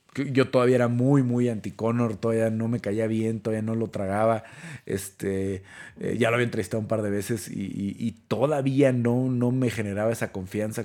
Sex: male